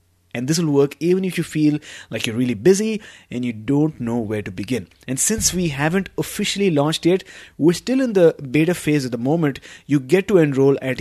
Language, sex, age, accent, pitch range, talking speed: English, male, 20-39, Indian, 125-160 Hz, 220 wpm